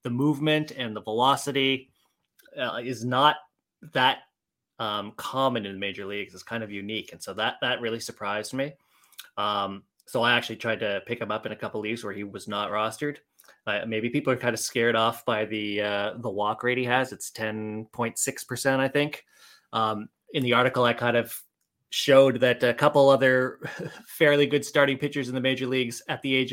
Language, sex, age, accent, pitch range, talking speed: English, male, 20-39, American, 110-135 Hz, 195 wpm